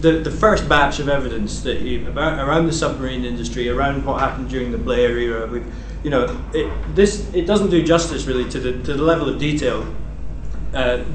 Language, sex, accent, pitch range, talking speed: French, male, British, 120-160 Hz, 200 wpm